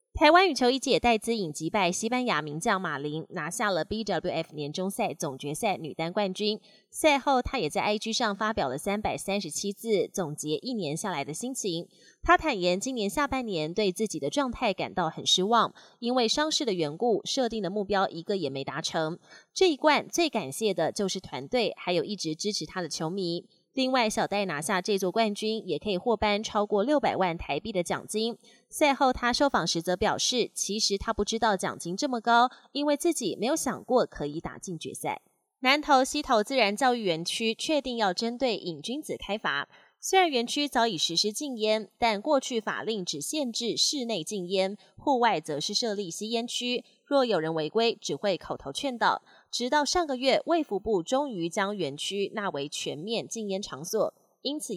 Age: 20-39